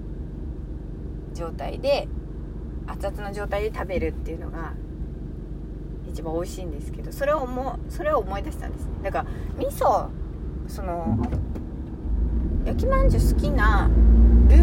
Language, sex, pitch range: Japanese, female, 65-80 Hz